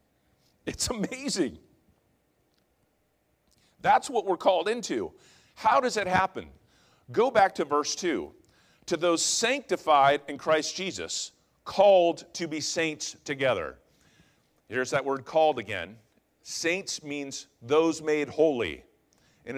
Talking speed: 115 wpm